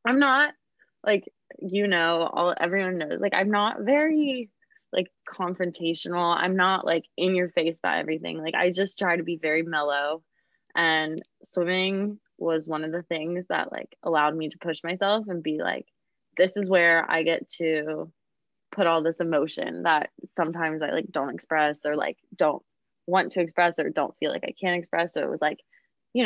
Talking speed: 185 wpm